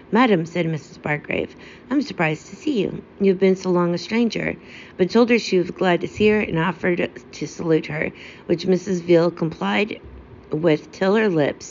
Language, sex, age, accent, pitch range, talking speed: English, female, 50-69, American, 155-185 Hz, 190 wpm